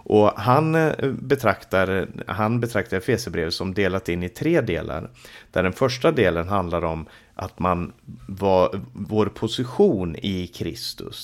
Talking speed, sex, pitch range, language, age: 130 wpm, male, 90-120 Hz, Swedish, 30-49